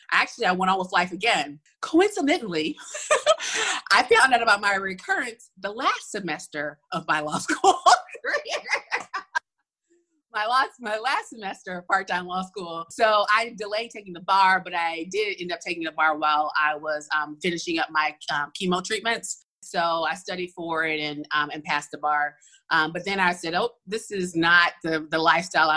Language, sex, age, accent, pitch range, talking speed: English, female, 30-49, American, 165-220 Hz, 180 wpm